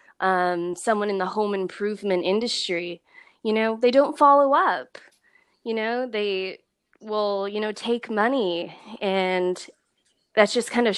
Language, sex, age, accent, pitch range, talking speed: English, female, 20-39, American, 180-220 Hz, 140 wpm